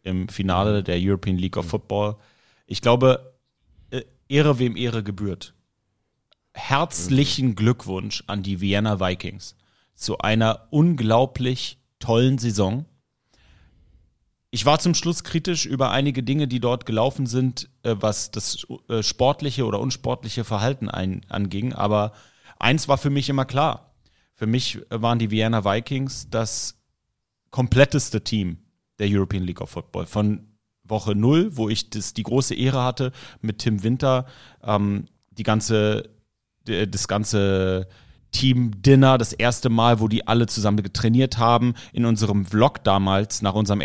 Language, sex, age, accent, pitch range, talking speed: German, male, 30-49, German, 100-130 Hz, 135 wpm